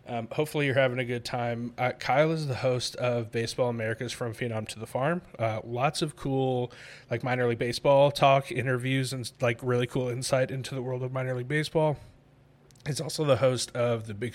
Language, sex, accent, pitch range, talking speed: English, male, American, 115-130 Hz, 205 wpm